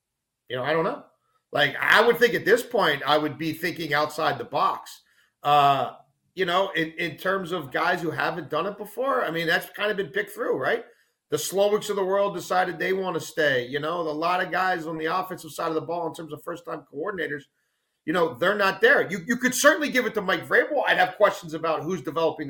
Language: English